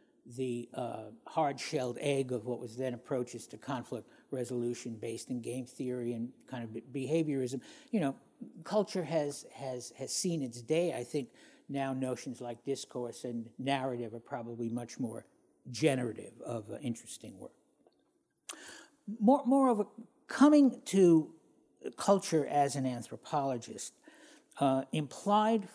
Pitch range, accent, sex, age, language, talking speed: 125-170 Hz, American, male, 60-79, English, 130 wpm